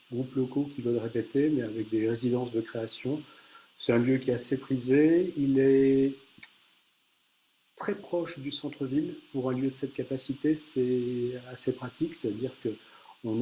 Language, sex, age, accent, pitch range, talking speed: French, male, 40-59, French, 120-140 Hz, 155 wpm